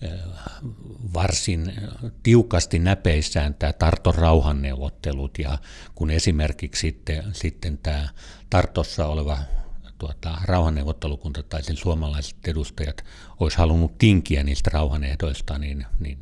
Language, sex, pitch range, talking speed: Finnish, male, 75-90 Hz, 100 wpm